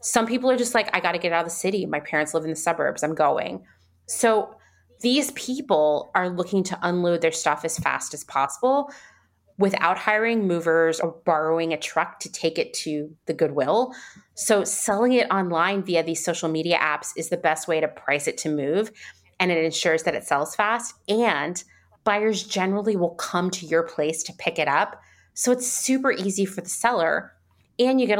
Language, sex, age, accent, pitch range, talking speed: English, female, 30-49, American, 160-205 Hz, 200 wpm